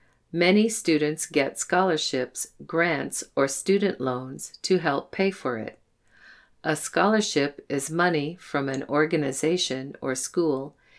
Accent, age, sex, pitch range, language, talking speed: American, 50-69, female, 135-175 Hz, English, 120 wpm